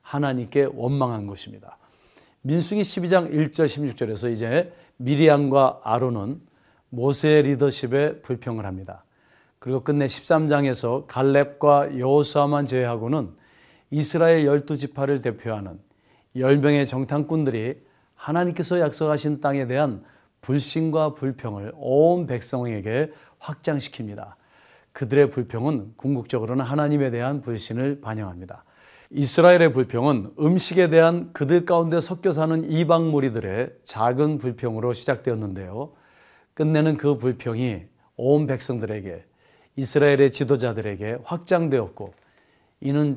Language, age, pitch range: Korean, 40-59, 120-150 Hz